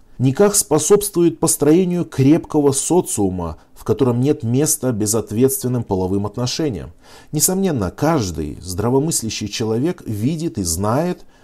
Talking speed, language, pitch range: 100 wpm, Russian, 105-150 Hz